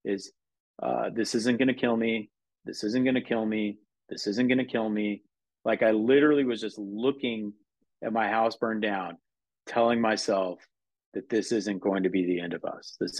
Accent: American